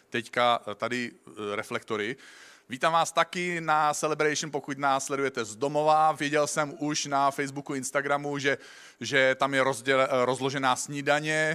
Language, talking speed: Czech, 135 wpm